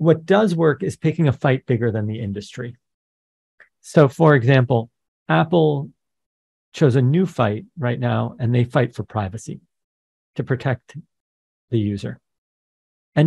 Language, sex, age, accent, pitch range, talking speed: English, male, 40-59, American, 115-150 Hz, 140 wpm